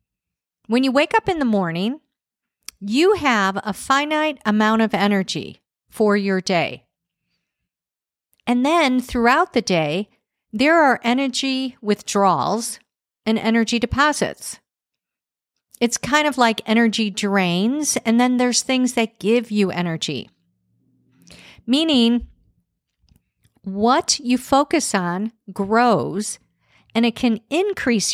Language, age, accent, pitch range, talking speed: English, 50-69, American, 195-250 Hz, 115 wpm